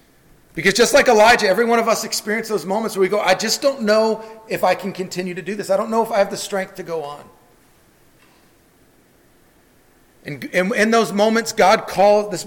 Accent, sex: American, male